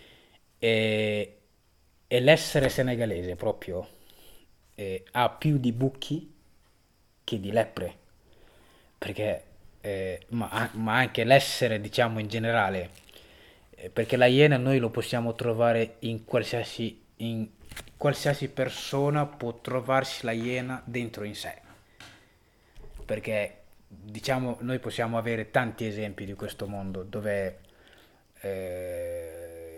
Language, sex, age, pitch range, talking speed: Italian, male, 30-49, 100-125 Hz, 110 wpm